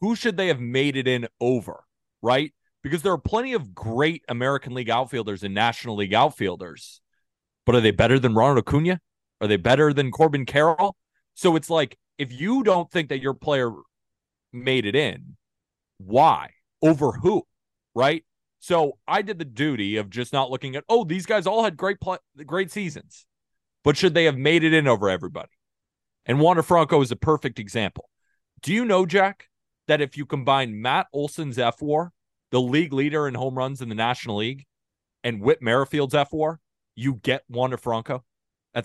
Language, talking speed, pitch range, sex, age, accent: English, 180 wpm, 125-165 Hz, male, 30-49, American